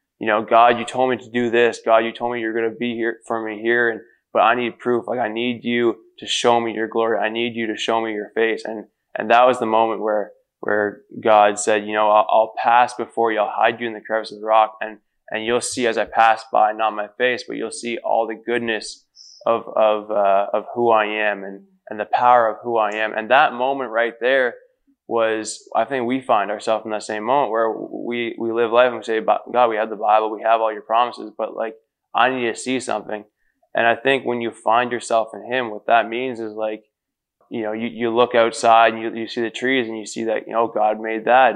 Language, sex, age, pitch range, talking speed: English, male, 20-39, 110-120 Hz, 255 wpm